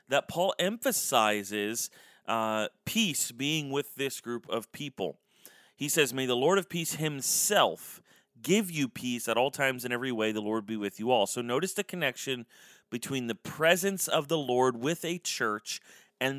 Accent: American